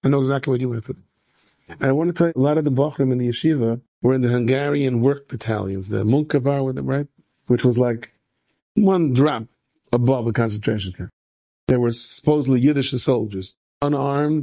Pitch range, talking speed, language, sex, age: 115-140 Hz, 190 wpm, English, male, 50-69